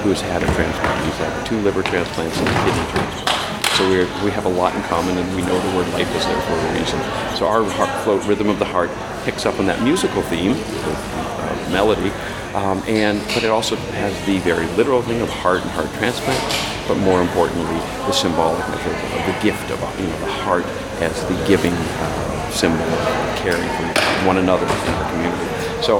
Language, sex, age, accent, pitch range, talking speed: English, male, 40-59, American, 90-110 Hz, 215 wpm